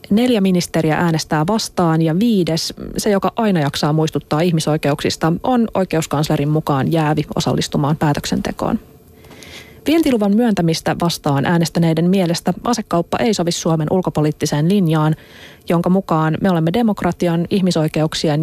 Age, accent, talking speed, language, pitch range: 30-49, native, 115 wpm, Finnish, 155-200 Hz